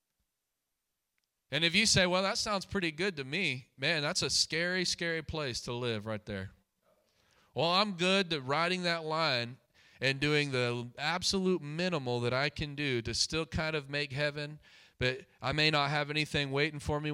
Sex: male